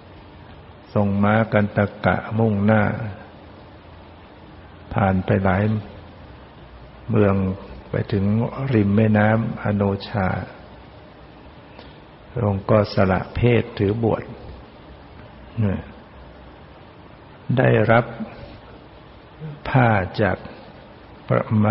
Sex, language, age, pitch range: male, Thai, 60-79, 100-115 Hz